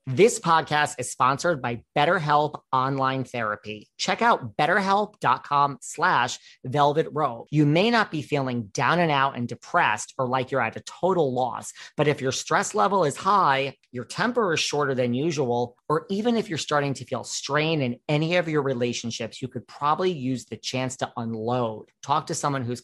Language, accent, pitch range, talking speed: English, American, 125-160 Hz, 180 wpm